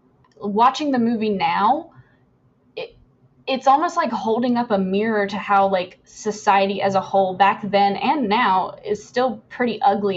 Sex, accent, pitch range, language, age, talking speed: female, American, 195-215 Hz, English, 10-29, 160 wpm